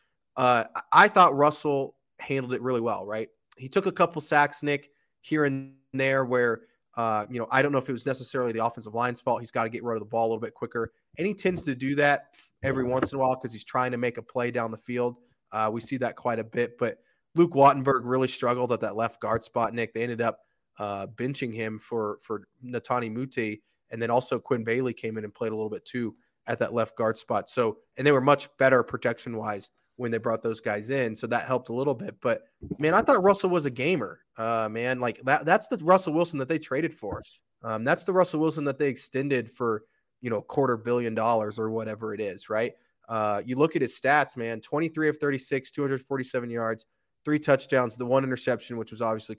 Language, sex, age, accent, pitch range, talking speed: English, male, 20-39, American, 115-140 Hz, 230 wpm